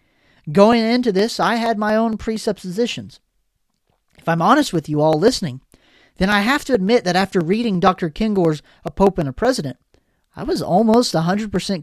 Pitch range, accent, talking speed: 160-215 Hz, American, 180 wpm